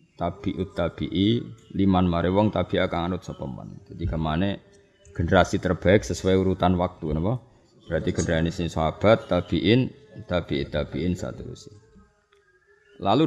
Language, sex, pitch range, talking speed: Indonesian, male, 85-110 Hz, 115 wpm